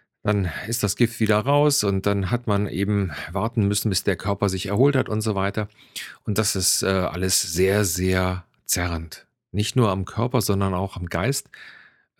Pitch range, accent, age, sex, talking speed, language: 90-105 Hz, German, 40-59, male, 180 wpm, German